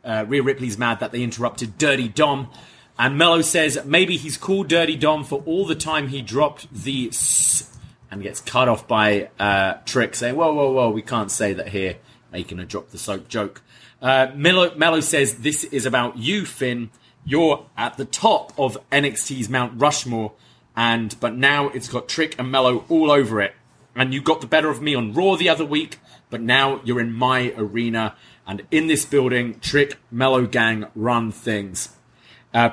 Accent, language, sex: British, English, male